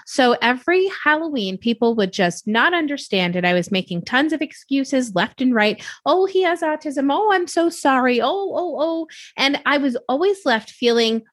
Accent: American